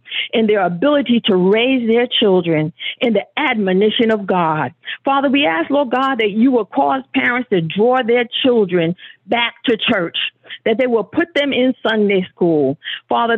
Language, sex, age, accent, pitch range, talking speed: English, female, 50-69, American, 200-265 Hz, 170 wpm